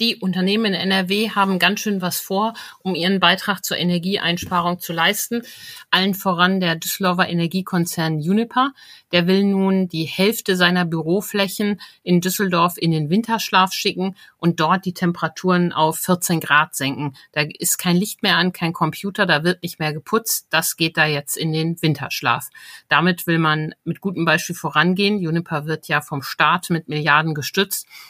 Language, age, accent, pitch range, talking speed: German, 50-69, German, 155-190 Hz, 165 wpm